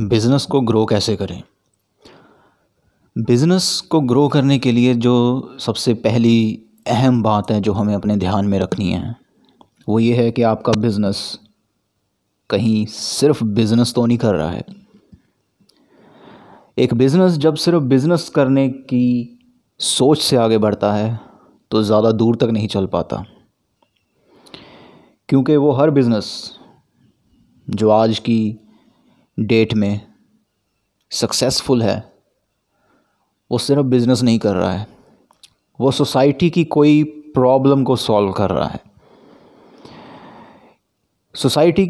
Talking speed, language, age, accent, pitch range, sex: 125 wpm, Hindi, 30-49, native, 105-135 Hz, male